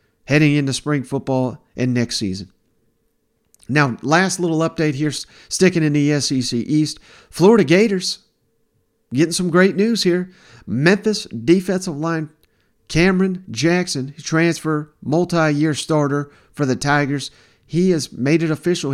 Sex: male